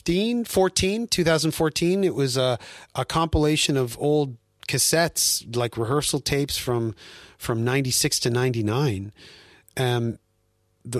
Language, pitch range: Swedish, 120-150 Hz